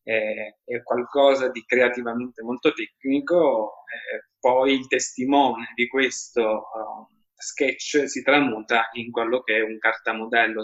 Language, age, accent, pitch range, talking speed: Italian, 20-39, native, 115-140 Hz, 125 wpm